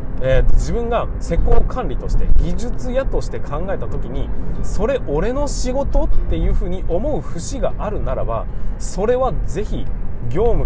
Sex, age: male, 20-39